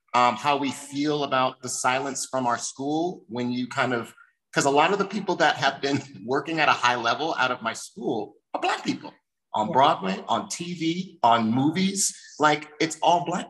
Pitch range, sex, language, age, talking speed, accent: 115-165 Hz, male, English, 30-49, 200 wpm, American